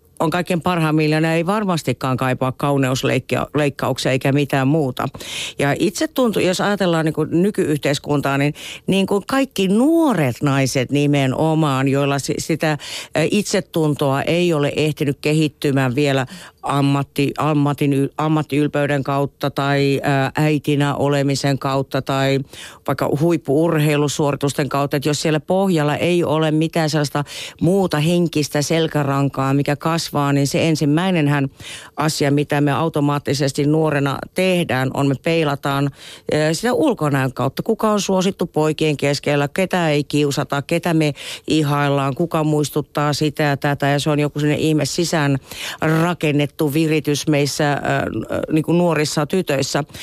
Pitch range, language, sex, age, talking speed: 140-160 Hz, Finnish, female, 50-69, 125 wpm